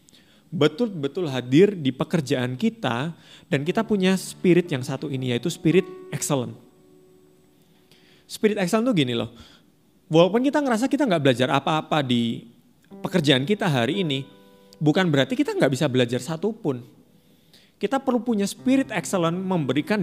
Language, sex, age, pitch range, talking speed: Indonesian, male, 30-49, 125-190 Hz, 135 wpm